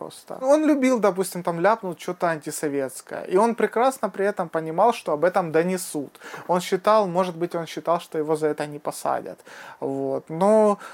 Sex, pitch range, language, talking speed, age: male, 150-185 Hz, Russian, 175 wpm, 30-49